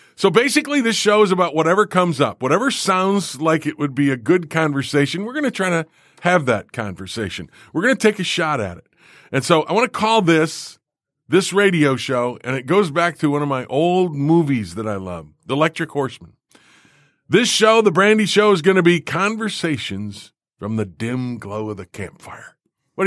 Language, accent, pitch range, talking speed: English, American, 140-190 Hz, 205 wpm